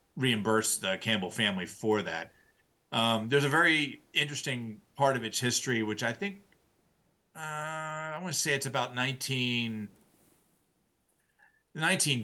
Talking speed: 125 wpm